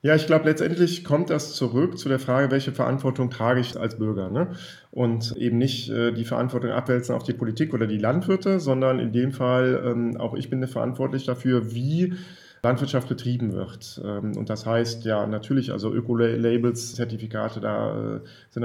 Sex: male